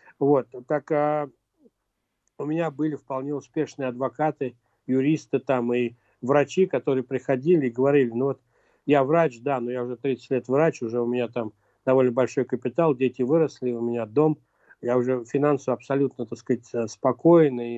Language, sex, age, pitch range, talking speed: Russian, male, 60-79, 125-150 Hz, 160 wpm